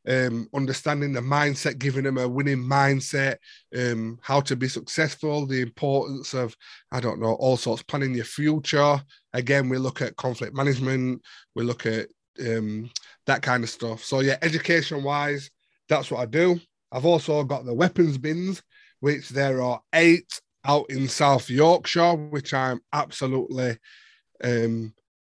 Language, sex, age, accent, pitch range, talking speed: English, male, 20-39, British, 125-145 Hz, 150 wpm